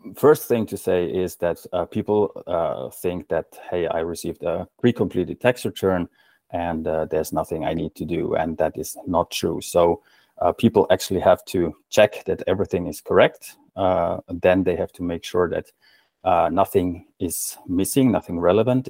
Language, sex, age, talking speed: Finnish, male, 30-49, 180 wpm